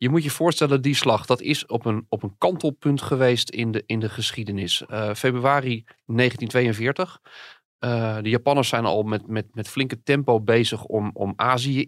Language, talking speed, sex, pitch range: Dutch, 180 wpm, male, 105-135 Hz